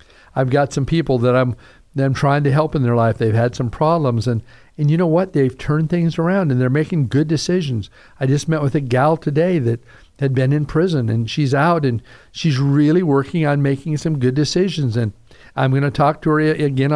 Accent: American